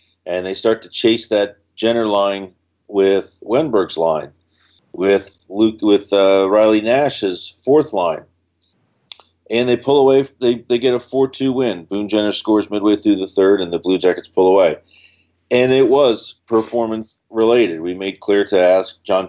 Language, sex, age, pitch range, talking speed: English, male, 40-59, 85-115 Hz, 170 wpm